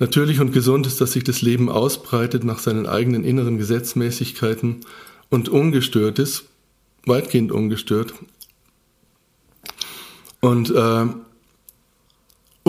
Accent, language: German, German